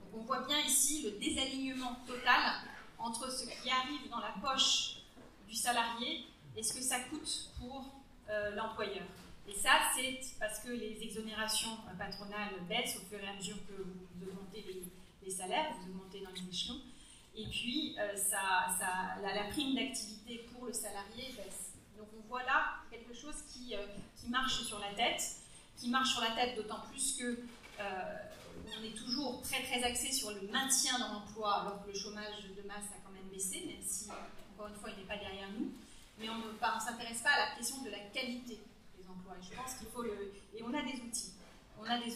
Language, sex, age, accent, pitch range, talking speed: French, female, 30-49, French, 205-250 Hz, 200 wpm